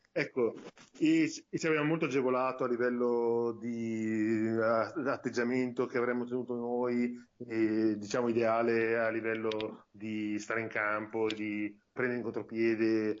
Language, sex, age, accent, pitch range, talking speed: Italian, male, 30-49, native, 115-140 Hz, 125 wpm